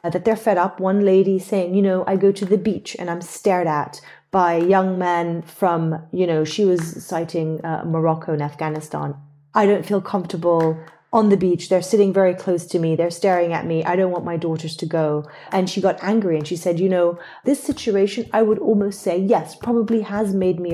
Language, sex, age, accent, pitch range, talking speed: English, female, 30-49, Irish, 170-205 Hz, 220 wpm